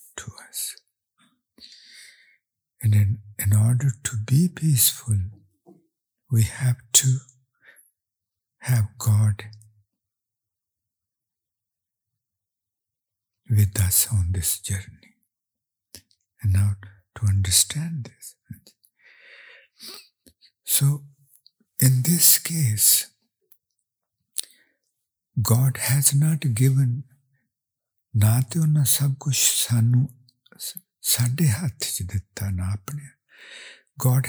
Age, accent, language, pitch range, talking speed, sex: 60-79, Indian, English, 100-135 Hz, 60 wpm, male